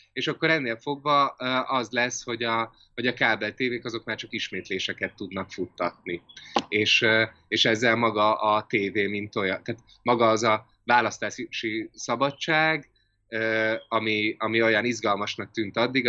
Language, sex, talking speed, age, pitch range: Hungarian, male, 140 wpm, 20-39, 95-120 Hz